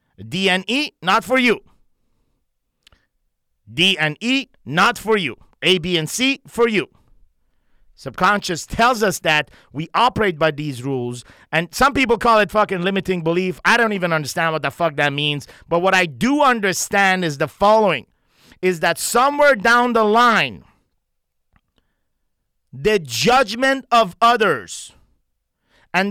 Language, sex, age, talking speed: English, male, 50-69, 145 wpm